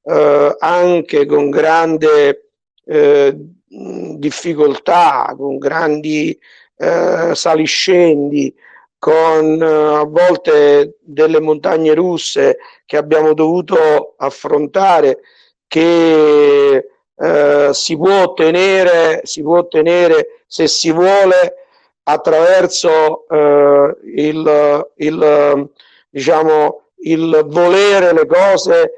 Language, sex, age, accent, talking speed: Italian, male, 50-69, native, 70 wpm